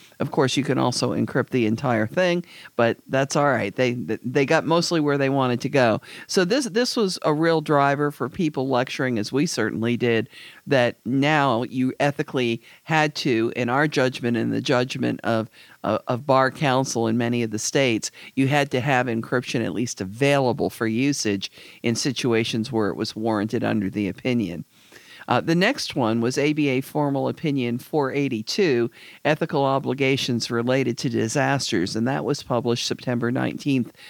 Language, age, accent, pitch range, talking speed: English, 50-69, American, 120-145 Hz, 170 wpm